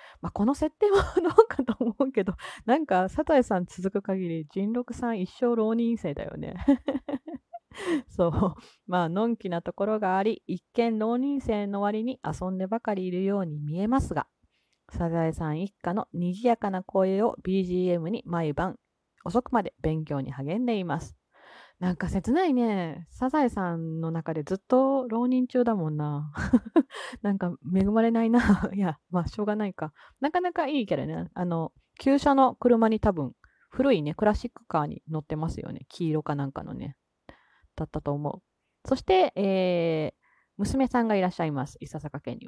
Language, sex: Japanese, female